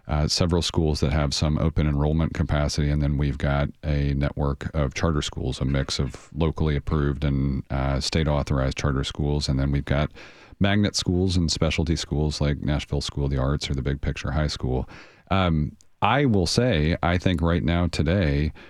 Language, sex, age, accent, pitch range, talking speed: English, male, 40-59, American, 75-85 Hz, 185 wpm